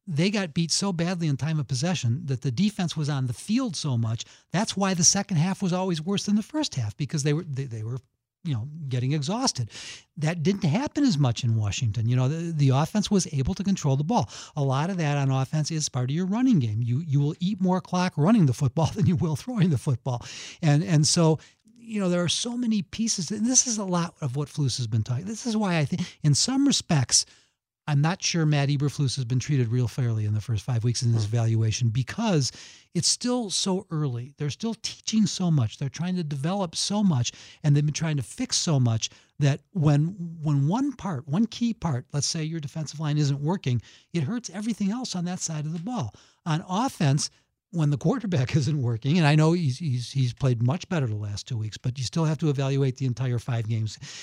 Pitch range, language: 130-180 Hz, English